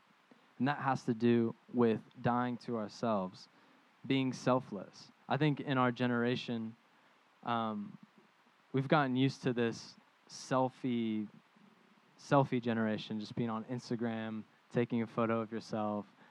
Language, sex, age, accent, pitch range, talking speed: English, male, 10-29, American, 115-135 Hz, 125 wpm